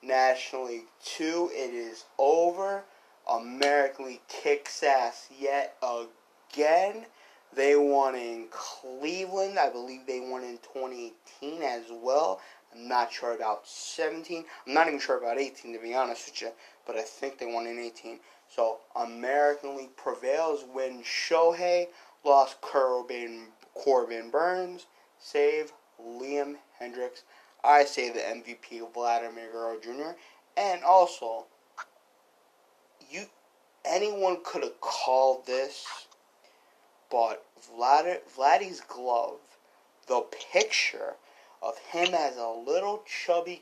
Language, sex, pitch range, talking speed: English, male, 120-175 Hz, 120 wpm